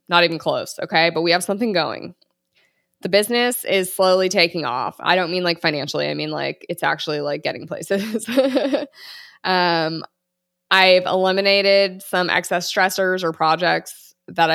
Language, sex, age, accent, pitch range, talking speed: English, female, 20-39, American, 165-190 Hz, 155 wpm